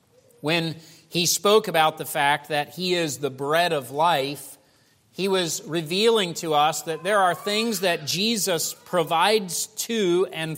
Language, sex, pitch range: English, male, 135-170 Hz